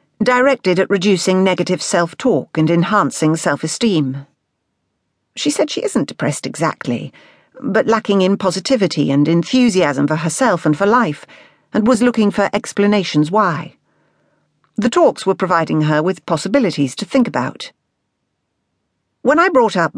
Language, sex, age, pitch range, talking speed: English, female, 50-69, 150-200 Hz, 135 wpm